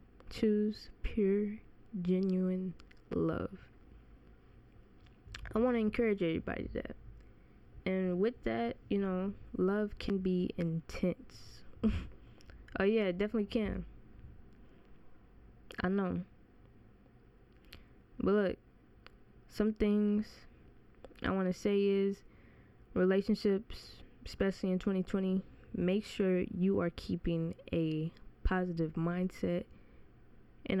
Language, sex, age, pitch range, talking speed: English, female, 10-29, 180-215 Hz, 95 wpm